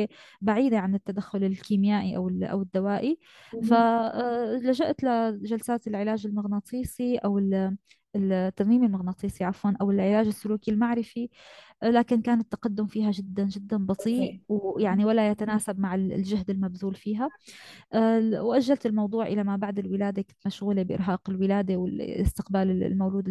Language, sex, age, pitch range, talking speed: Arabic, female, 20-39, 195-230 Hz, 115 wpm